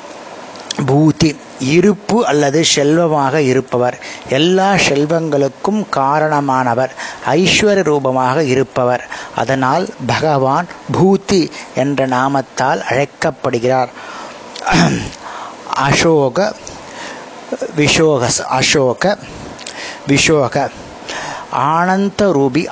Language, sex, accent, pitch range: Tamil, male, native, 130-170 Hz